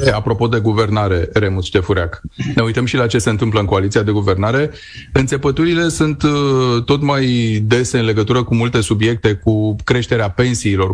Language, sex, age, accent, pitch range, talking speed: Romanian, male, 30-49, native, 105-130 Hz, 160 wpm